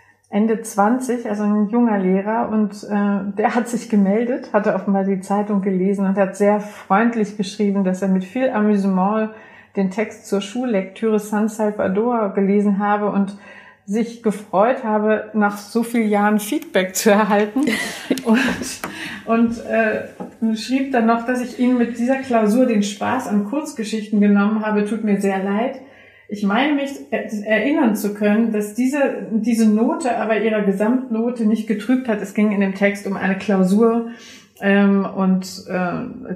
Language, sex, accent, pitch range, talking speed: German, female, German, 195-225 Hz, 155 wpm